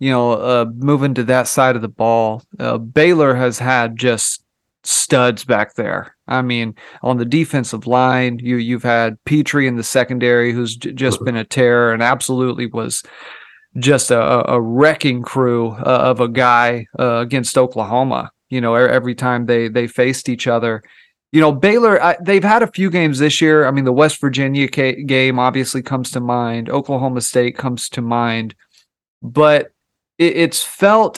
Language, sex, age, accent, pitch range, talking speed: English, male, 30-49, American, 120-155 Hz, 175 wpm